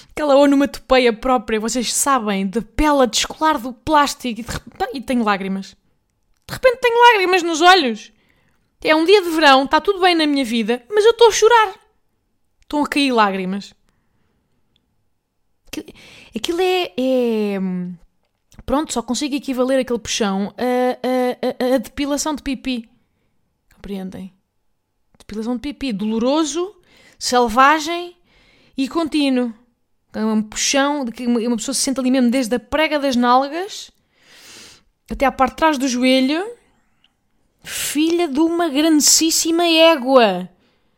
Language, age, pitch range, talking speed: Portuguese, 20-39, 220-300 Hz, 135 wpm